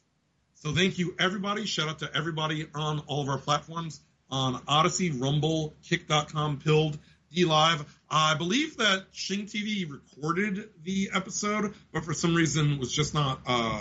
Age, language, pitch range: 30-49, English, 135-170 Hz